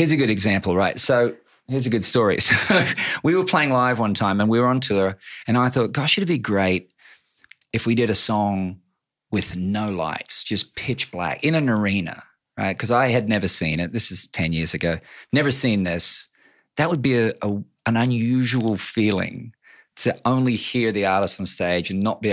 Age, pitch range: 40-59, 95-120 Hz